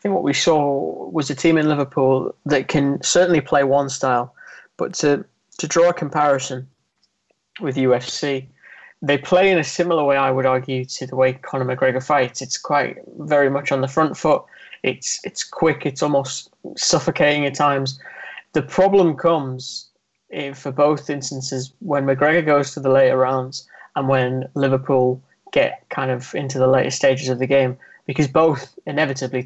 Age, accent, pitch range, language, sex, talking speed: 20-39, British, 135-155 Hz, English, male, 175 wpm